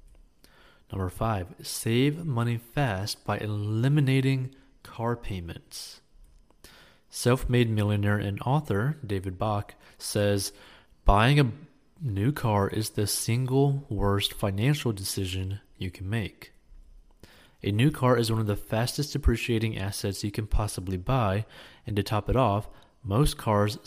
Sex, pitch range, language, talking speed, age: male, 100-125 Hz, English, 125 wpm, 20-39